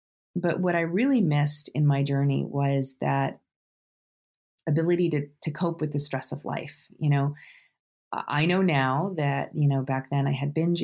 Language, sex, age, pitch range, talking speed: English, female, 30-49, 140-160 Hz, 175 wpm